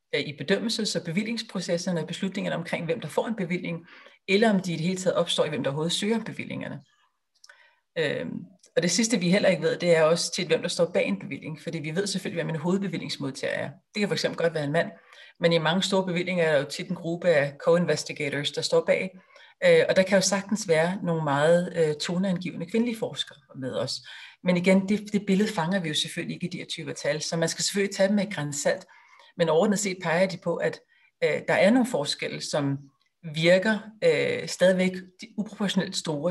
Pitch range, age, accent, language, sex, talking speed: 160-195 Hz, 40-59, native, Danish, female, 210 wpm